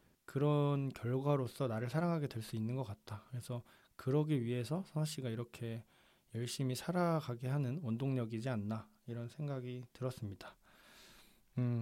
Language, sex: Korean, male